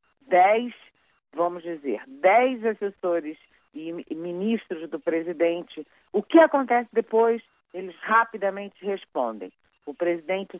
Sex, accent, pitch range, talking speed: female, Brazilian, 155-210 Hz, 100 wpm